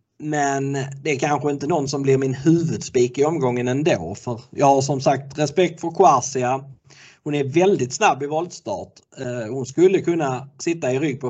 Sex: male